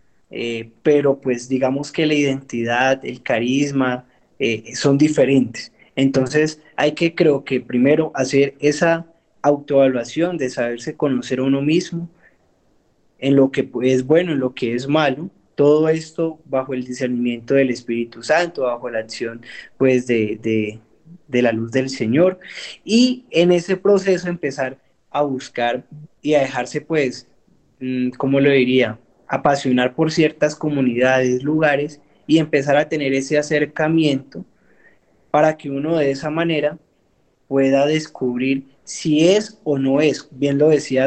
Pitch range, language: 125-150 Hz, Spanish